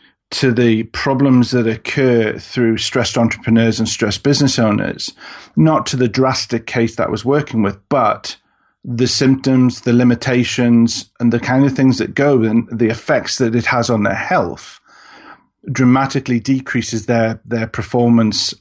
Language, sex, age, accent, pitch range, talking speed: English, male, 40-59, British, 115-130 Hz, 155 wpm